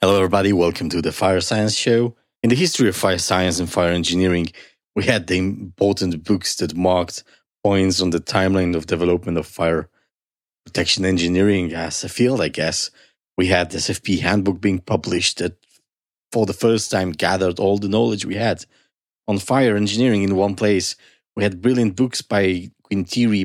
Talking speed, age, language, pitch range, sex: 175 wpm, 30-49, English, 90-110 Hz, male